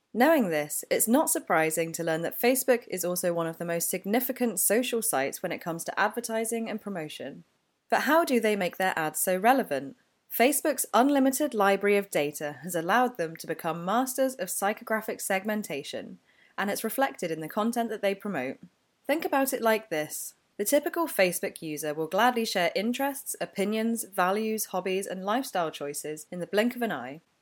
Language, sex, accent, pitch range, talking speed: English, female, British, 165-240 Hz, 180 wpm